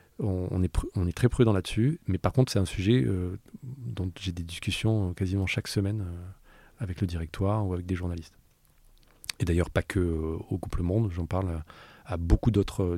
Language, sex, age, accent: French, male, 30-49, French